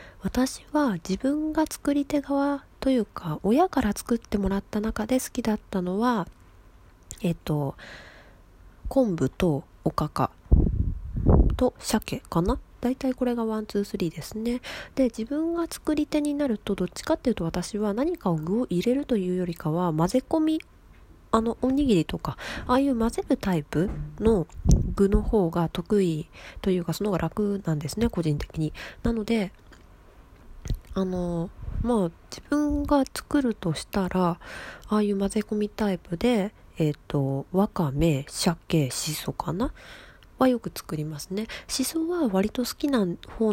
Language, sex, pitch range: Japanese, female, 165-235 Hz